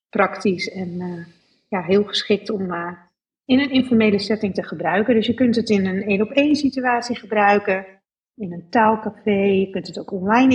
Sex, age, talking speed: female, 40-59, 190 wpm